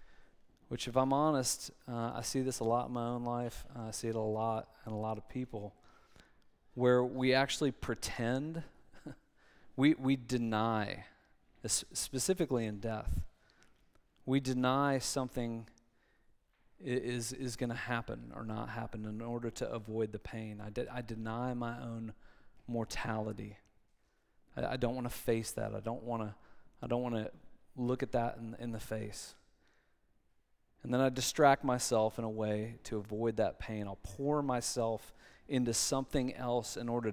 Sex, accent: male, American